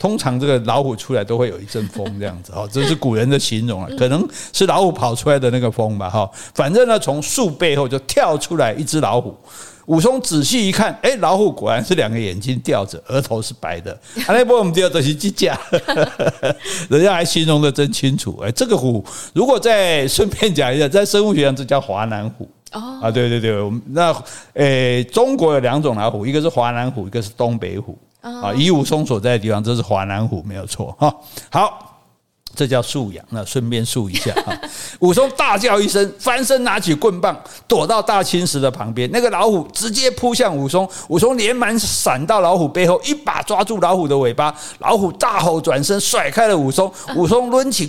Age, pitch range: 50-69, 115-190 Hz